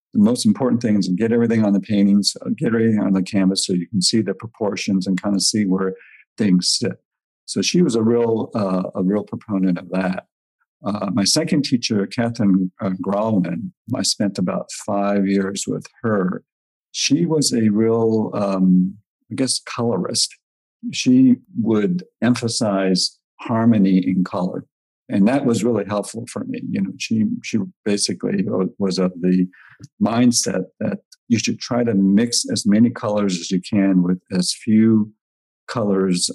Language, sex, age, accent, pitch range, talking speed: English, male, 50-69, American, 95-115 Hz, 165 wpm